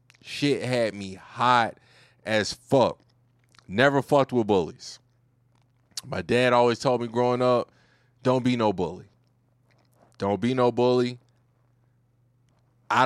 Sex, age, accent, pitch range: male, 20-39, American, 115-130 Hz